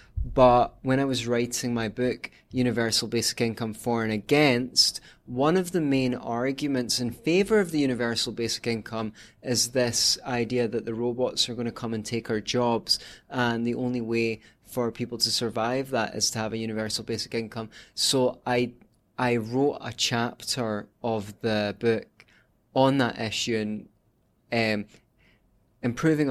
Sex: male